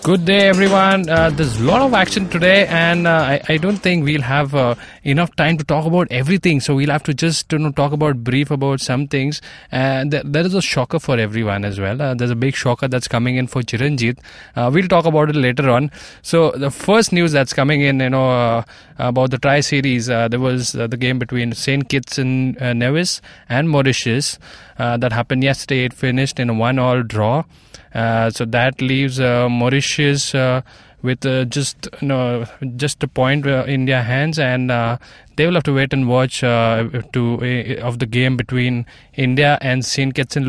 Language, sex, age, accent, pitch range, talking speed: English, male, 20-39, Indian, 125-150 Hz, 205 wpm